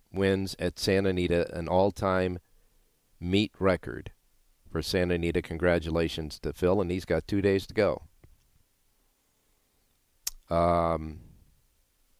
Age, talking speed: 50-69, 110 wpm